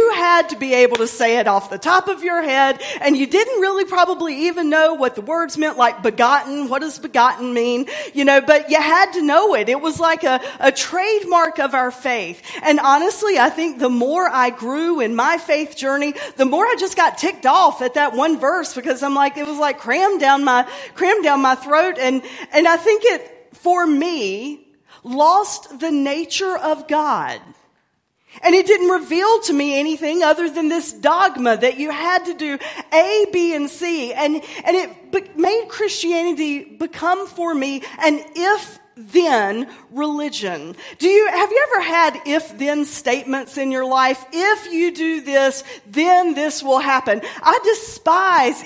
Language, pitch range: English, 260-340 Hz